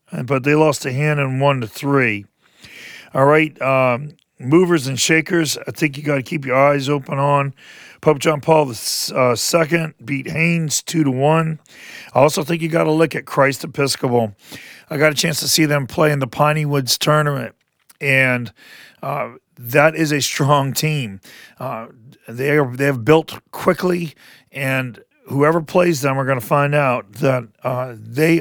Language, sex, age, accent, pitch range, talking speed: English, male, 40-59, American, 125-150 Hz, 175 wpm